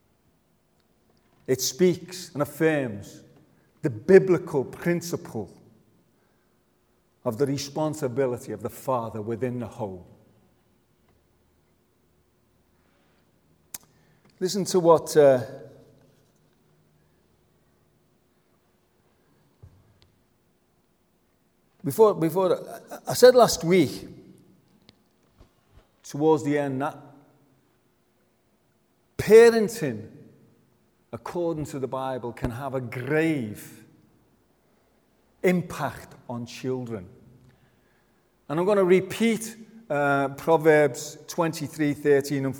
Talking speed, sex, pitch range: 75 wpm, male, 120-160 Hz